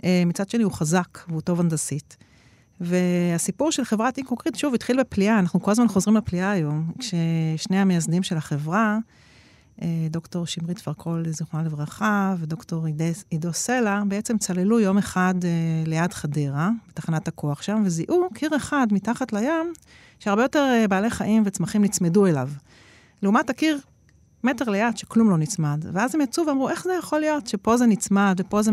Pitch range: 175-230 Hz